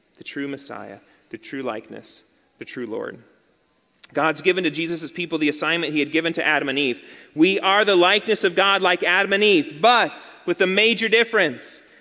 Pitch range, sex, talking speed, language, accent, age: 145-215 Hz, male, 190 wpm, English, American, 30-49